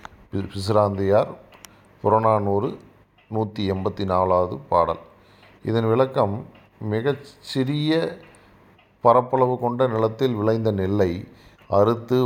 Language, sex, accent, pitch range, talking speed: Tamil, male, native, 95-115 Hz, 80 wpm